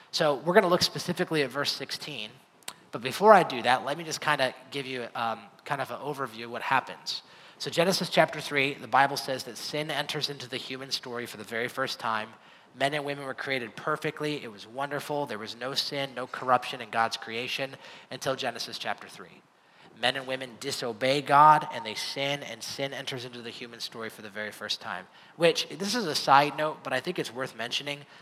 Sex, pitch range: male, 120-150 Hz